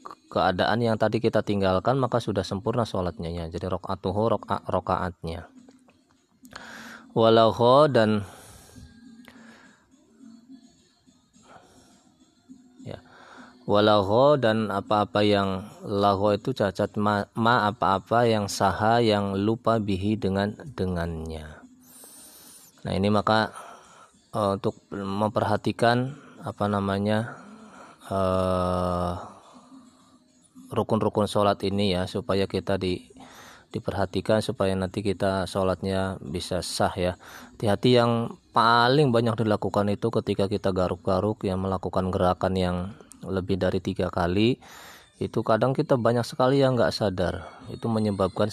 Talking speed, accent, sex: 105 wpm, native, male